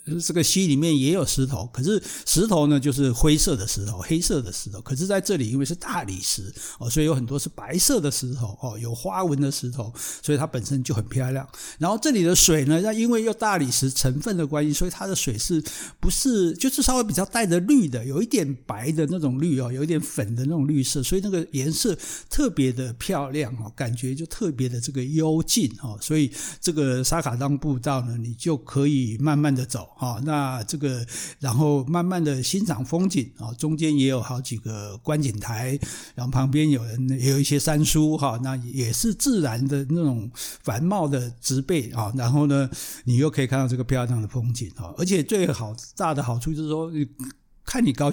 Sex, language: male, Chinese